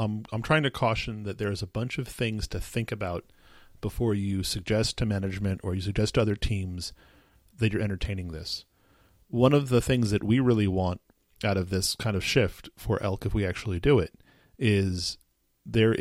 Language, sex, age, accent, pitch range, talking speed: English, male, 40-59, American, 95-115 Hz, 195 wpm